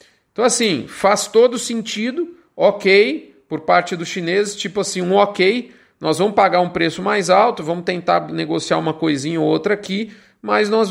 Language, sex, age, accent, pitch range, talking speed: Portuguese, male, 40-59, Brazilian, 175-210 Hz, 170 wpm